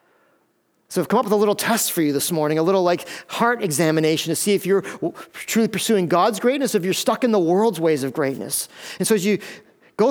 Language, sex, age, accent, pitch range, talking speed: English, male, 40-59, American, 165-205 Hz, 230 wpm